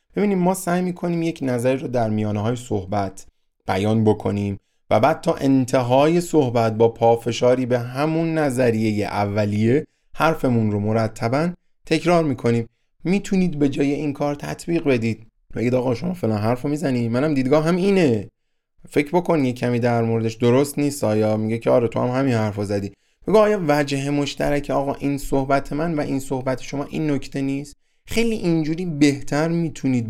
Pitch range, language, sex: 110-150 Hz, Persian, male